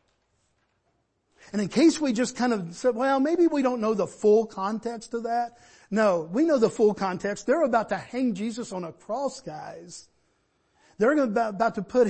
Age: 50-69